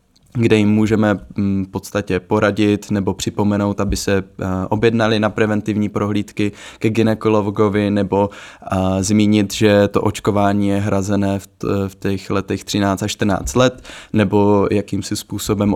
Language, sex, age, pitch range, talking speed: Czech, male, 20-39, 100-110 Hz, 125 wpm